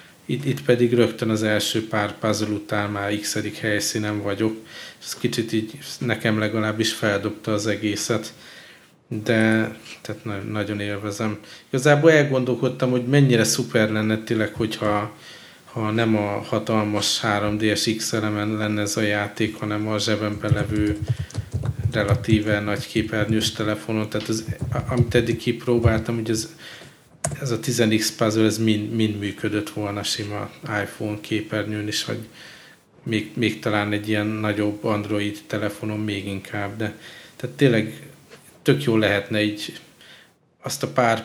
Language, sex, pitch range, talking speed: Hungarian, male, 105-115 Hz, 135 wpm